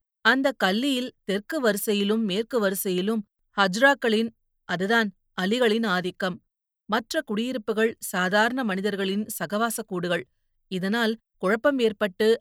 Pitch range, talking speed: 195-235 Hz, 85 wpm